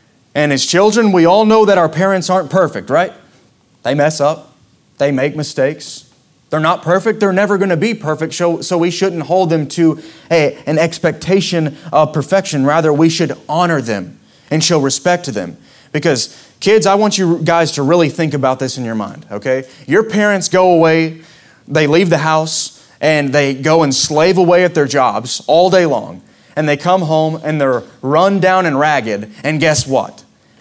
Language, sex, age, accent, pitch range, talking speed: English, male, 20-39, American, 155-190 Hz, 185 wpm